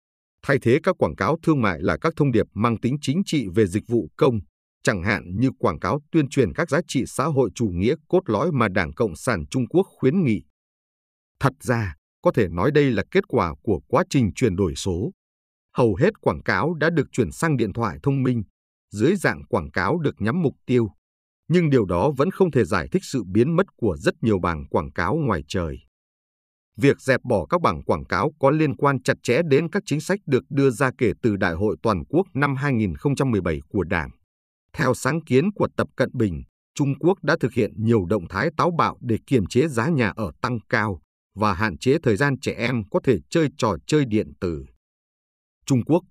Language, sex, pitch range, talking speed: Vietnamese, male, 100-145 Hz, 215 wpm